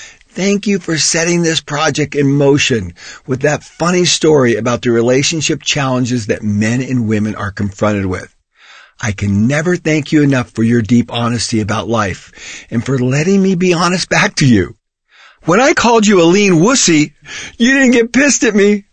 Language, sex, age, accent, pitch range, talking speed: English, male, 50-69, American, 105-160 Hz, 180 wpm